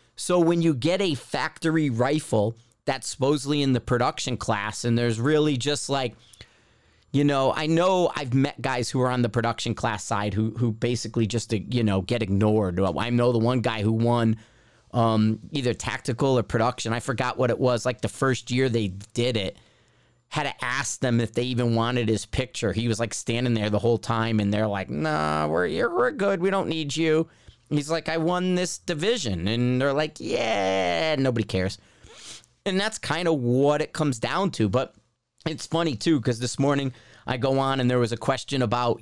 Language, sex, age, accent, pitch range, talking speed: English, male, 30-49, American, 115-135 Hz, 205 wpm